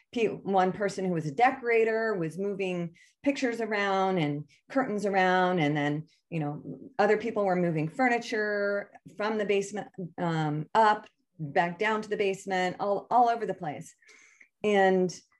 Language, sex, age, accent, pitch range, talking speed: English, female, 30-49, American, 165-210 Hz, 150 wpm